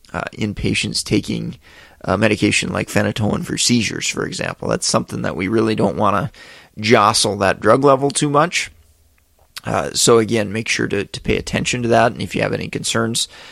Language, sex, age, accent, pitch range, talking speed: English, male, 30-49, American, 110-140 Hz, 190 wpm